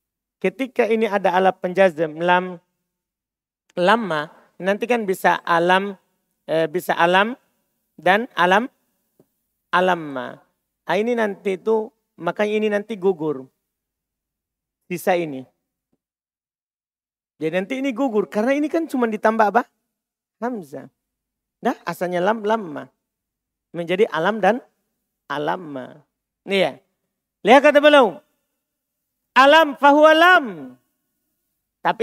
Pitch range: 175-225 Hz